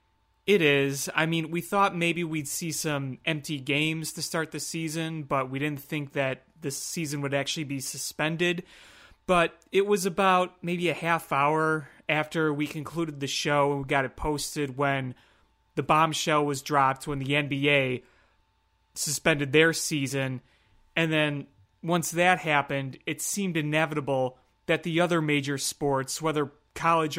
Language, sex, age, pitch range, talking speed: English, male, 30-49, 140-165 Hz, 155 wpm